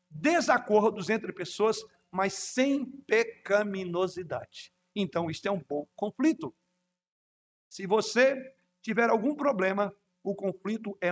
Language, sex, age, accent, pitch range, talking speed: Portuguese, male, 60-79, Brazilian, 180-225 Hz, 110 wpm